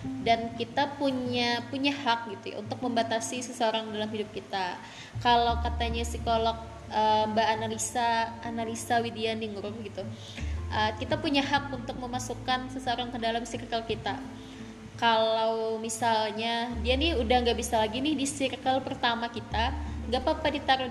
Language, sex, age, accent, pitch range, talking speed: Indonesian, female, 20-39, native, 220-255 Hz, 140 wpm